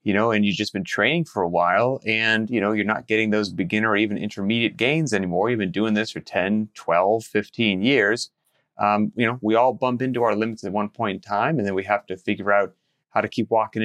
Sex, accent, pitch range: male, American, 105-125 Hz